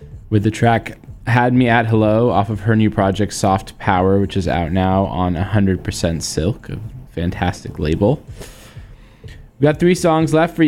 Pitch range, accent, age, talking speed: 105-130 Hz, American, 20-39, 170 wpm